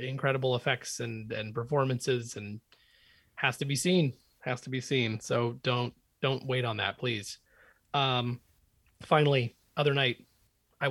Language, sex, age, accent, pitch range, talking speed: English, male, 30-49, American, 120-150 Hz, 145 wpm